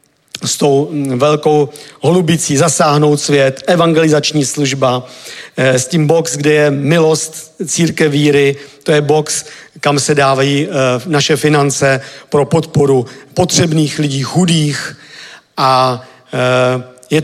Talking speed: 110 wpm